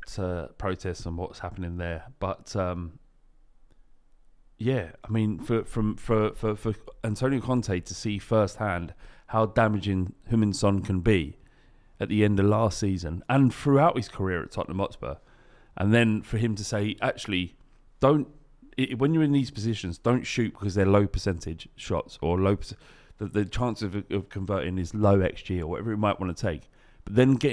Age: 30-49